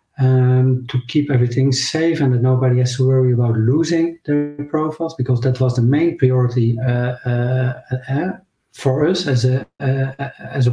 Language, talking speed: English, 175 wpm